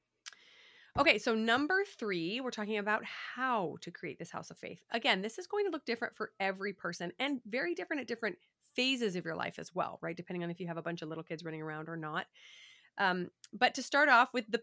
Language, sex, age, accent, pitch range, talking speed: English, female, 30-49, American, 175-225 Hz, 235 wpm